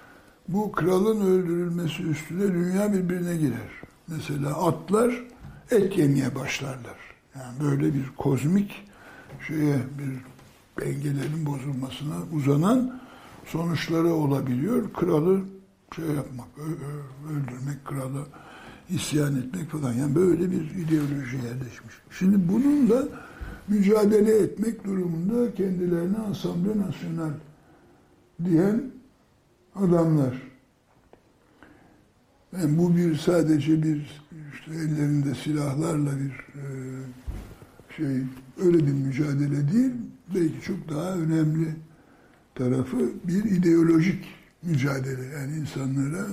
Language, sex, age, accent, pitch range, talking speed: Turkish, male, 60-79, native, 140-185 Hz, 95 wpm